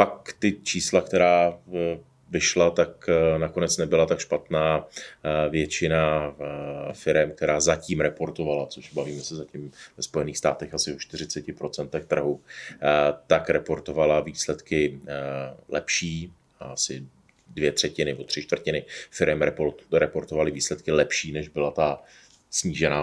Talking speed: 110 wpm